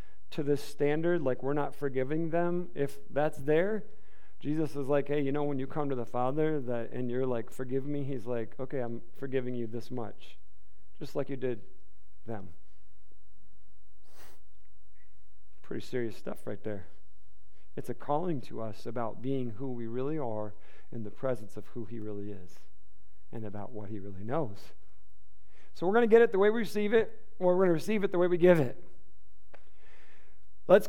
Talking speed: 185 wpm